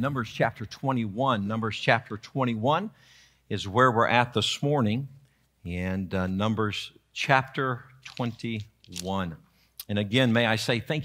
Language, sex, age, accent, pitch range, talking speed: English, male, 50-69, American, 110-140 Hz, 125 wpm